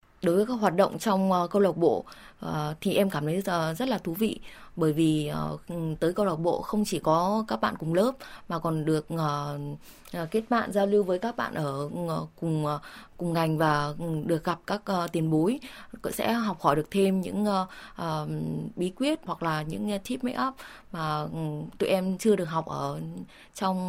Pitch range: 160-200 Hz